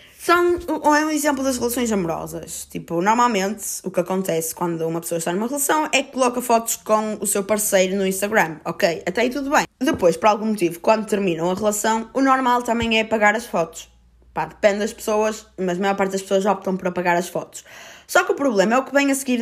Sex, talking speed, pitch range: female, 225 wpm, 185-240 Hz